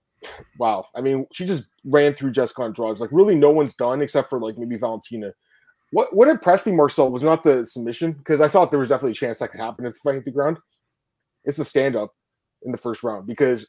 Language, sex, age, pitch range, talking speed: English, male, 20-39, 120-150 Hz, 230 wpm